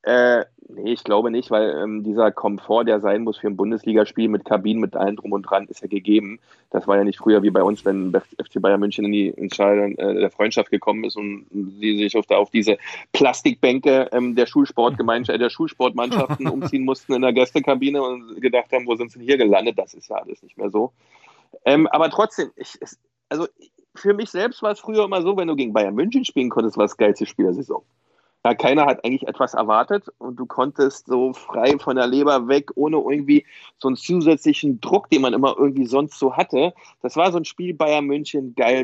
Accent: German